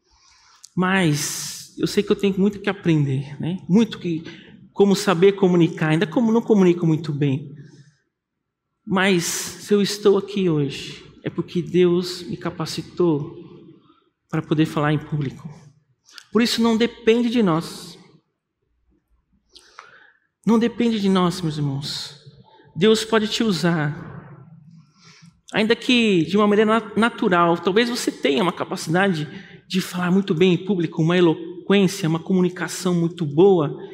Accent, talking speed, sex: Brazilian, 135 wpm, male